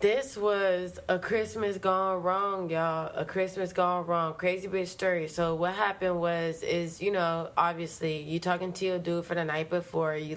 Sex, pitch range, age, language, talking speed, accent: female, 160-185 Hz, 20-39, English, 185 wpm, American